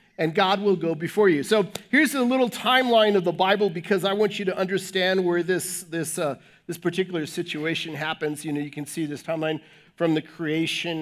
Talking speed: 205 wpm